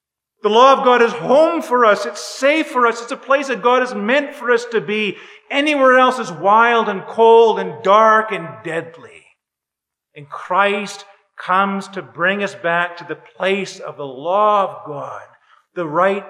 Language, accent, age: English, American, 50-69